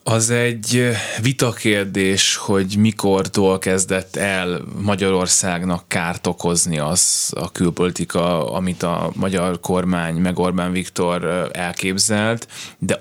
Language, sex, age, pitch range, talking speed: Hungarian, male, 20-39, 90-105 Hz, 100 wpm